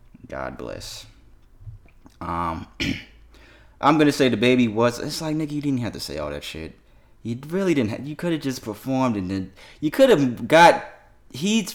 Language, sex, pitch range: English, male, 100-140 Hz